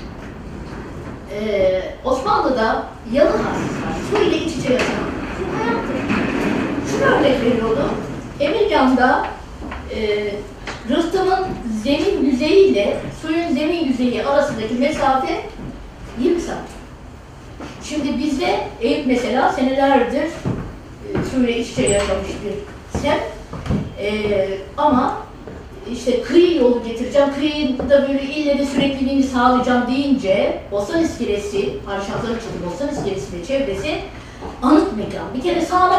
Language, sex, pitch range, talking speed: Turkish, female, 240-310 Hz, 110 wpm